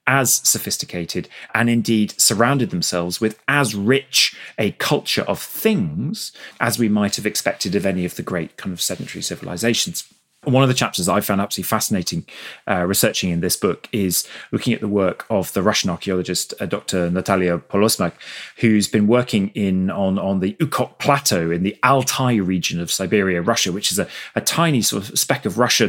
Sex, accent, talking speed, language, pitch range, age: male, British, 185 wpm, English, 95-125 Hz, 30-49